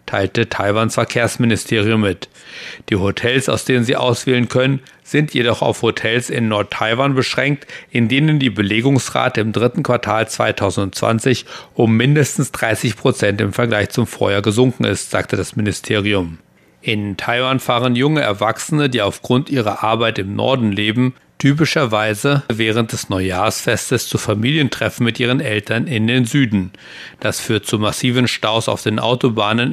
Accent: German